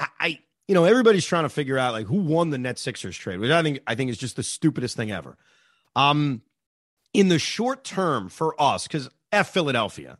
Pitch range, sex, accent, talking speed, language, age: 120-150 Hz, male, American, 210 wpm, English, 30-49